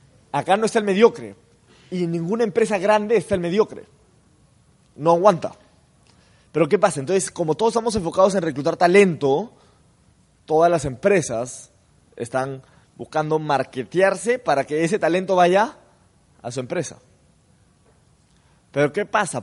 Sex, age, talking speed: male, 20-39, 135 wpm